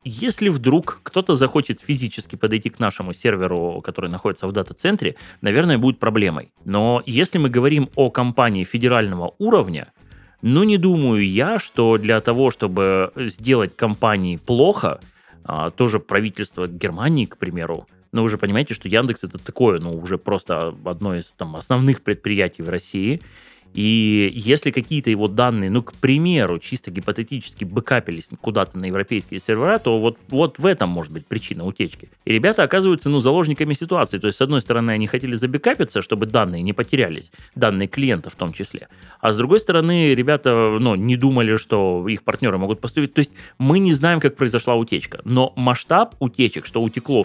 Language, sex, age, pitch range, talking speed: Russian, male, 20-39, 100-135 Hz, 165 wpm